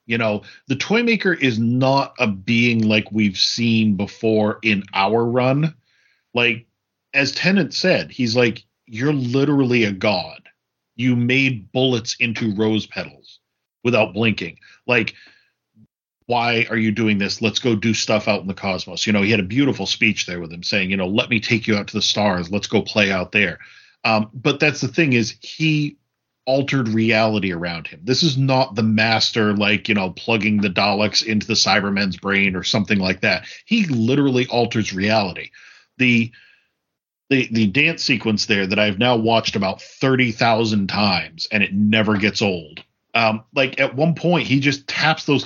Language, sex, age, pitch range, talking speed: English, male, 40-59, 105-130 Hz, 175 wpm